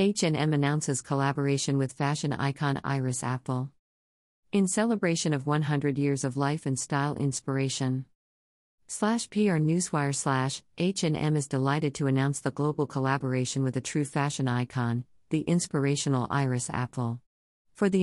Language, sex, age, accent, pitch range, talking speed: English, female, 50-69, American, 130-150 Hz, 135 wpm